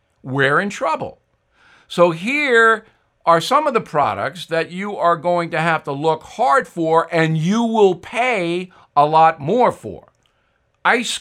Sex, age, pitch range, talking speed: male, 60-79, 150-220 Hz, 155 wpm